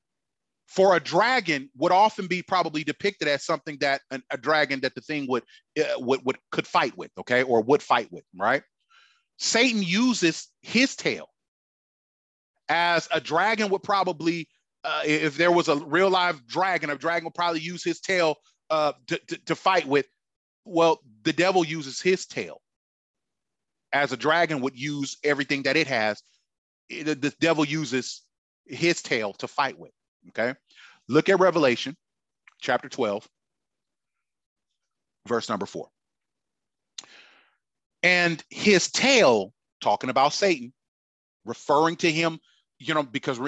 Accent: American